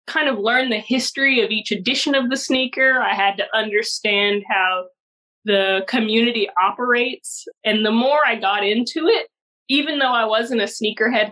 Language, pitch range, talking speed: English, 205-260 Hz, 170 wpm